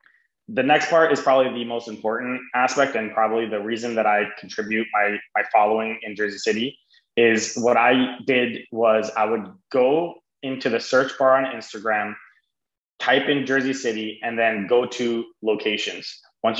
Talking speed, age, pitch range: 165 wpm, 20-39, 110-140 Hz